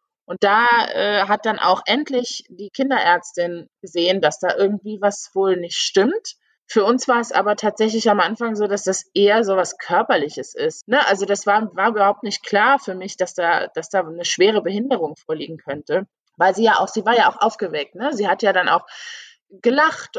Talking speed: 200 wpm